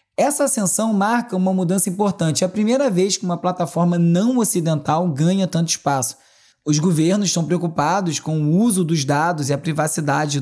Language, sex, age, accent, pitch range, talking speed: Portuguese, male, 20-39, Brazilian, 155-195 Hz, 175 wpm